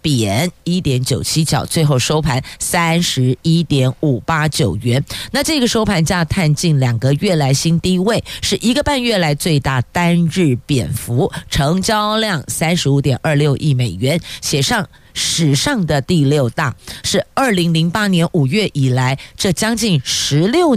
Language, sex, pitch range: Chinese, female, 135-180 Hz